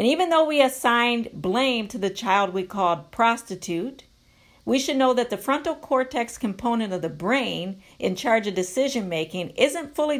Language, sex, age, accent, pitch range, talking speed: English, female, 50-69, American, 180-265 Hz, 170 wpm